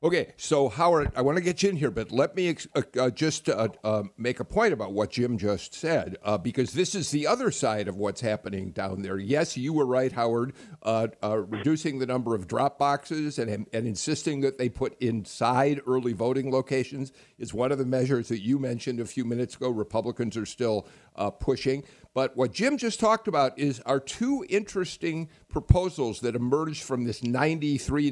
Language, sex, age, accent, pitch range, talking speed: English, male, 50-69, American, 120-155 Hz, 205 wpm